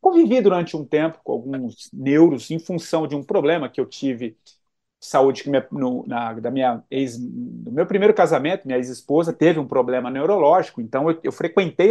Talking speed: 175 wpm